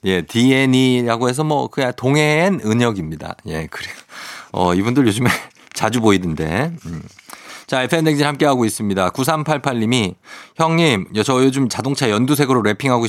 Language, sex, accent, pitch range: Korean, male, native, 105-145 Hz